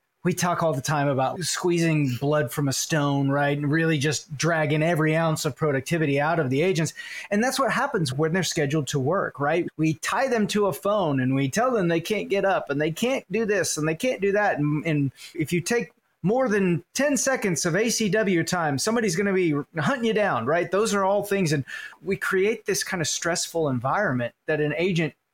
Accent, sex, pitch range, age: American, male, 150-195 Hz, 30-49